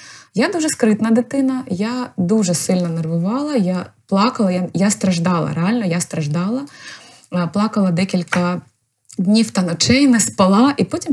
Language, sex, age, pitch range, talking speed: Ukrainian, female, 20-39, 180-235 Hz, 135 wpm